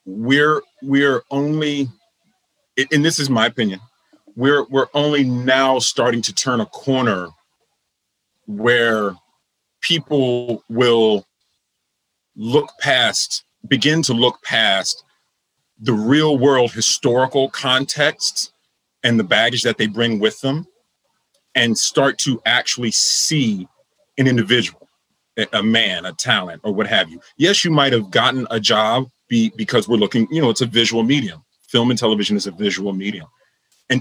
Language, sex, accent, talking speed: English, male, American, 135 wpm